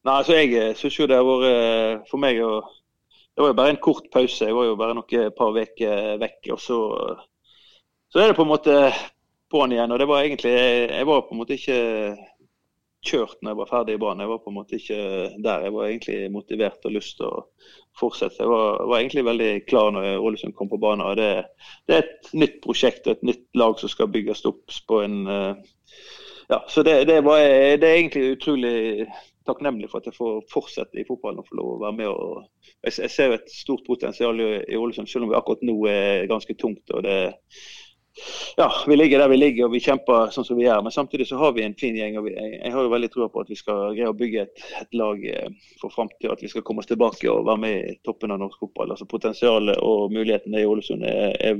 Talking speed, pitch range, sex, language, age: 210 wpm, 110-150 Hz, male, English, 30-49